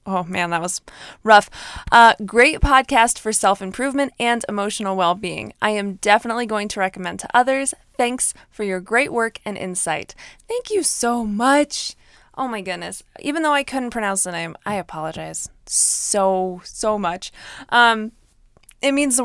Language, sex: English, female